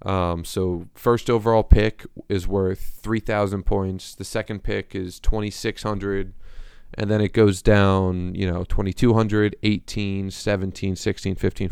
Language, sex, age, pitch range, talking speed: English, male, 20-39, 90-105 Hz, 135 wpm